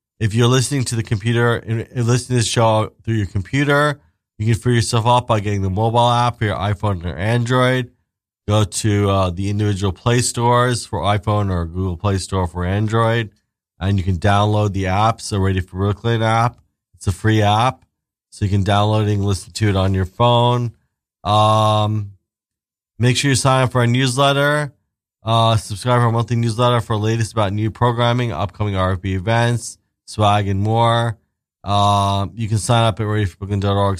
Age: 20-39